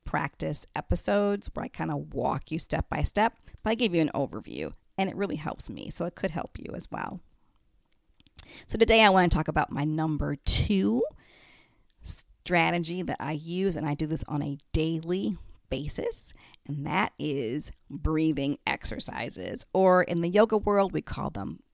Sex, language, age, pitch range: female, English, 40-59, 150-185 Hz